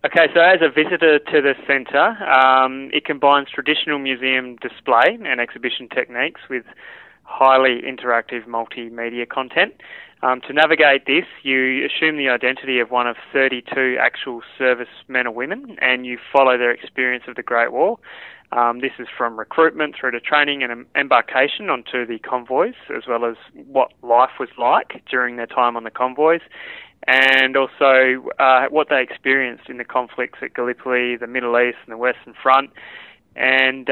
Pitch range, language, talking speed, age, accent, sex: 120-135 Hz, English, 165 wpm, 20-39, Australian, male